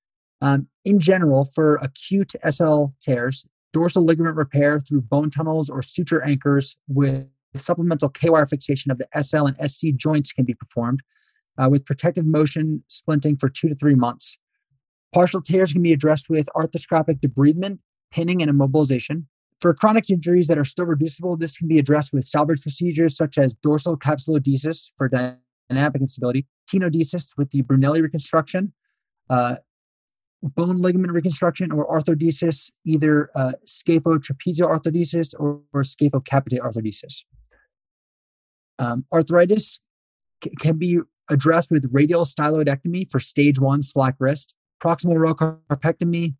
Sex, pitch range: male, 140-170 Hz